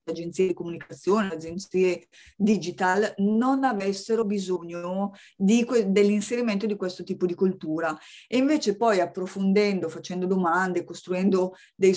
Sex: female